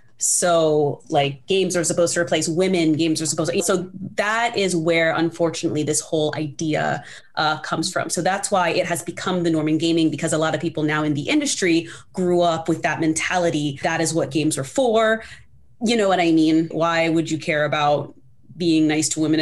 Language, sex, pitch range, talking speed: English, female, 155-190 Hz, 205 wpm